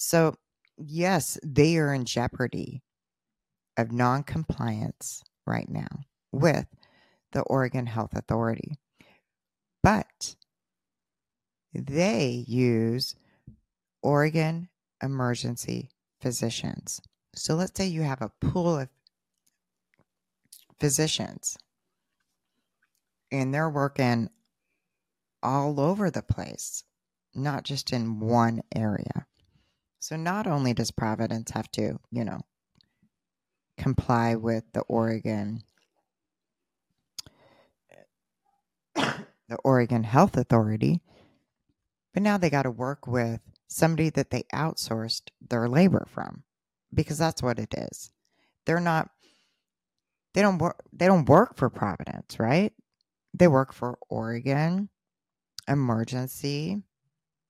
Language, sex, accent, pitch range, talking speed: English, female, American, 115-160 Hz, 100 wpm